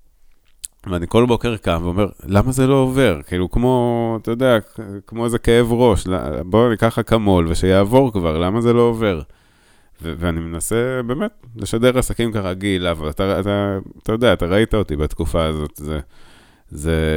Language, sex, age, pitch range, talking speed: Hebrew, male, 30-49, 80-105 Hz, 160 wpm